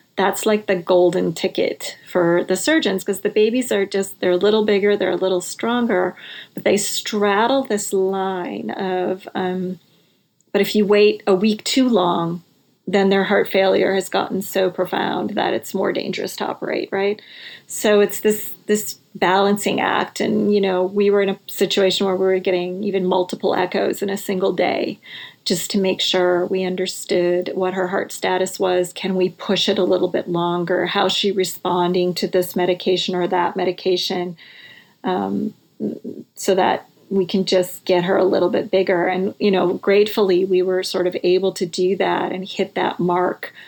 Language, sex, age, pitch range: English, female, 40-59, 185-200 Hz